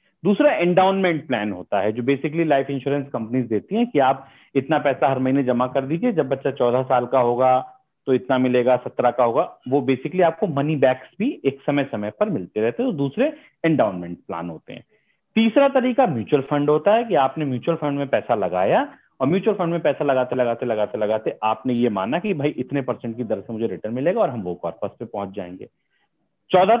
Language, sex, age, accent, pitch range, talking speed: Hindi, male, 40-59, native, 125-180 Hz, 215 wpm